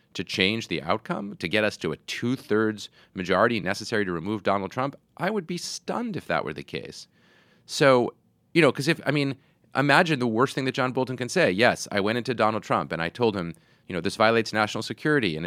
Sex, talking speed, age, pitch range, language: male, 225 wpm, 30-49, 95-130 Hz, English